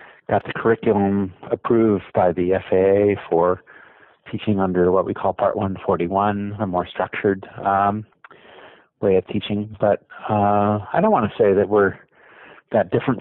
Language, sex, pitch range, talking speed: English, male, 90-110 Hz, 150 wpm